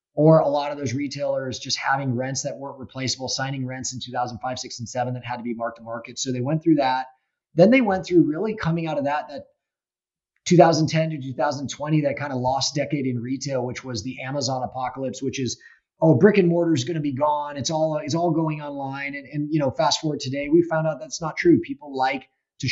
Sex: male